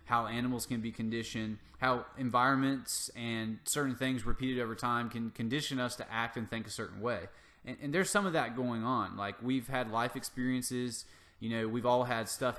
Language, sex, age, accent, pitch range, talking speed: English, male, 20-39, American, 110-135 Hz, 200 wpm